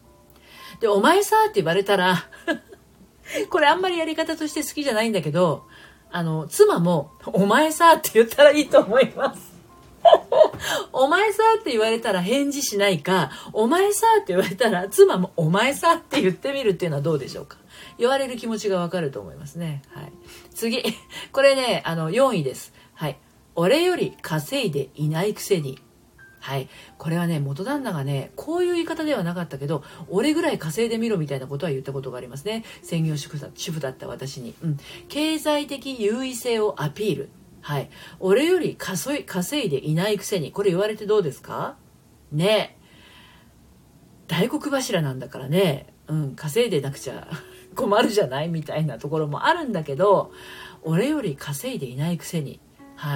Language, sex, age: Japanese, female, 40-59